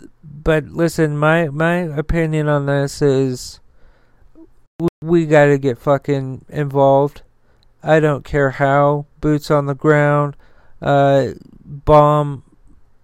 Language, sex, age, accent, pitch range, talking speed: English, male, 40-59, American, 140-150 Hz, 115 wpm